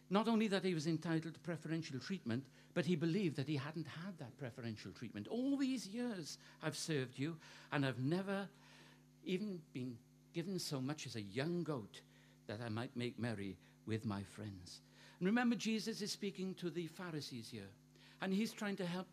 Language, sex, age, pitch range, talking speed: English, male, 60-79, 130-185 Hz, 185 wpm